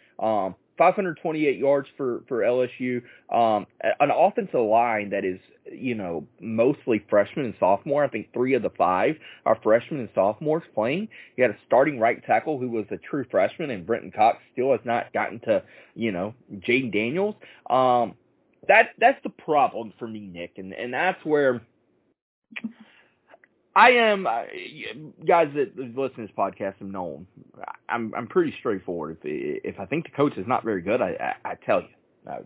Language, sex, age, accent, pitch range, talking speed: English, male, 30-49, American, 110-180 Hz, 180 wpm